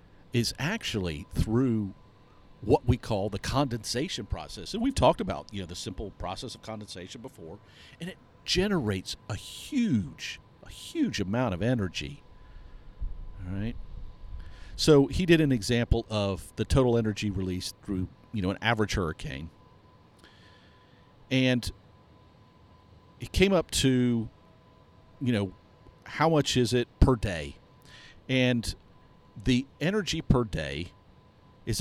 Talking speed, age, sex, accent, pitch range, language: 130 wpm, 50-69, male, American, 90-125 Hz, English